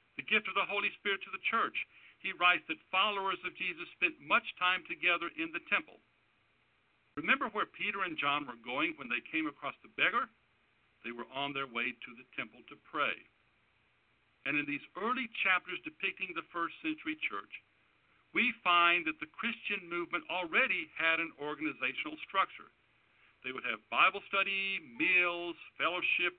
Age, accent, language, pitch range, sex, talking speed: 60-79, American, English, 150-230 Hz, male, 165 wpm